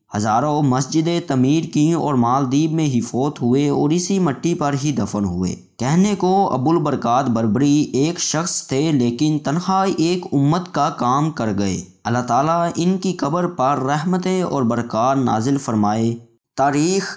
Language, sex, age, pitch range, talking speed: Urdu, male, 20-39, 115-160 Hz, 155 wpm